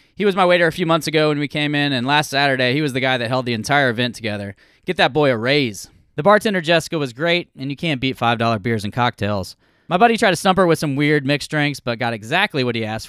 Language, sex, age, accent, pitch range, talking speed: English, male, 20-39, American, 125-170 Hz, 275 wpm